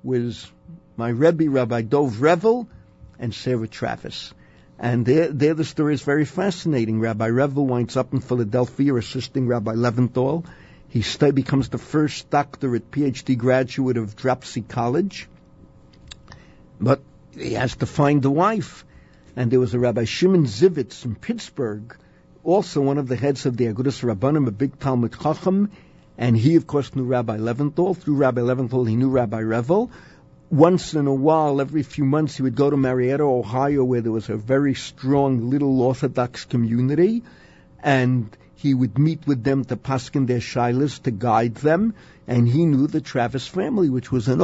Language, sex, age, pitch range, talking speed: English, male, 50-69, 120-145 Hz, 165 wpm